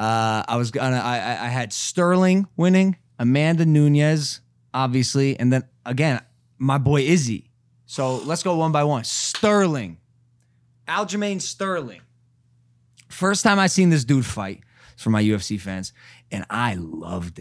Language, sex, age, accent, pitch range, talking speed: English, male, 20-39, American, 125-170 Hz, 140 wpm